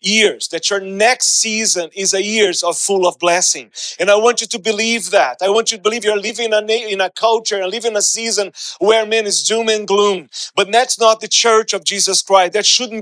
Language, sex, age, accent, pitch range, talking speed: English, male, 40-59, Brazilian, 200-225 Hz, 240 wpm